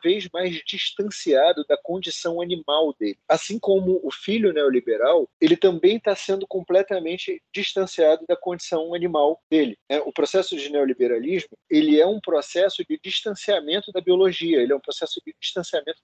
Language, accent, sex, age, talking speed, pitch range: Portuguese, Brazilian, male, 40-59, 150 wpm, 145-210 Hz